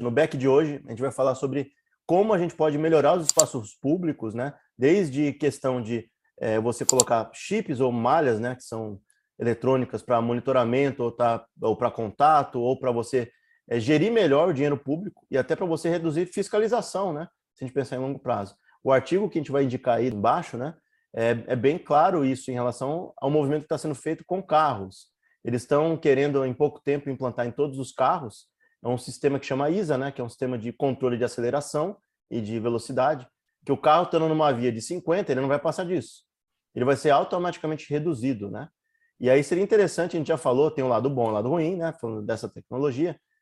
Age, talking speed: 20-39, 215 wpm